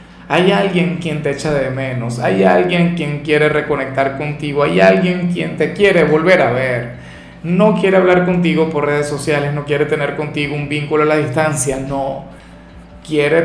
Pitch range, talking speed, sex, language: 145-180 Hz, 175 wpm, male, Spanish